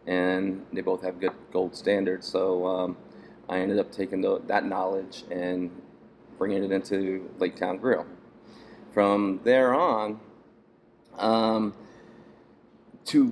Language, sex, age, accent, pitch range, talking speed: English, male, 20-39, American, 95-110 Hz, 125 wpm